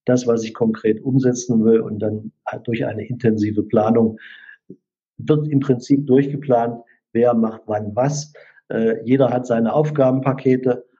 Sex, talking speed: male, 140 wpm